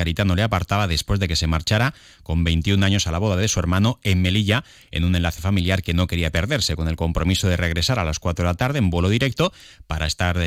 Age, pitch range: 30-49, 85-105 Hz